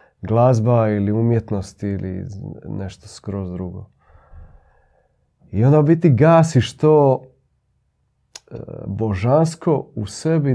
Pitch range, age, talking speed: 100-125 Hz, 40-59, 85 wpm